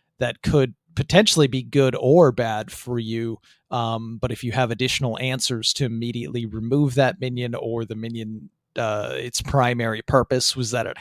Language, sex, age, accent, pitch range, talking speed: English, male, 30-49, American, 115-140 Hz, 170 wpm